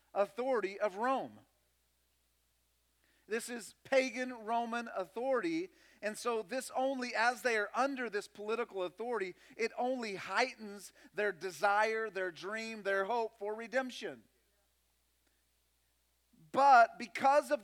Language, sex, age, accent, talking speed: English, male, 40-59, American, 110 wpm